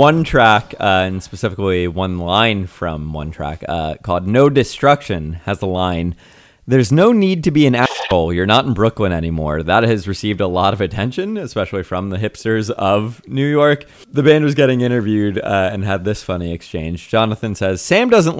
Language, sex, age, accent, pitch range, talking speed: English, male, 30-49, American, 100-145 Hz, 190 wpm